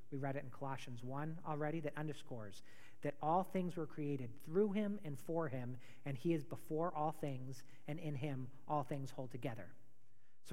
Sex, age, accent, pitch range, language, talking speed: male, 40-59, American, 125-170 Hz, English, 190 wpm